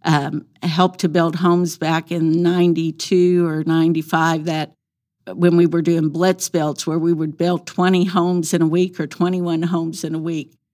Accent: American